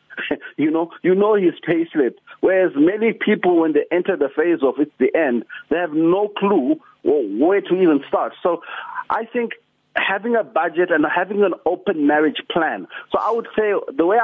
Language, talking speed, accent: English, 190 wpm, South African